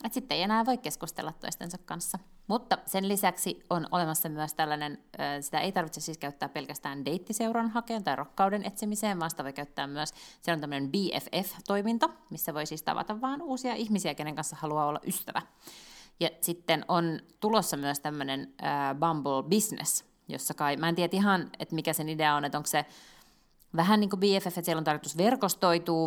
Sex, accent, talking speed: female, native, 175 wpm